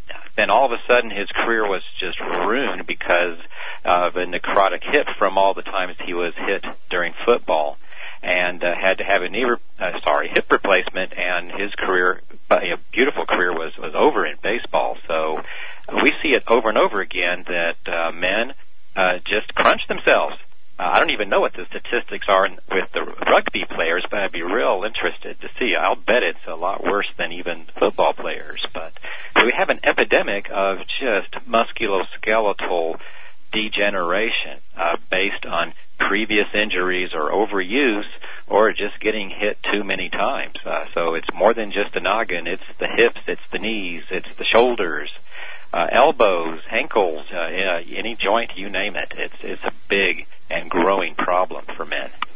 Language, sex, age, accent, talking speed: English, male, 50-69, American, 165 wpm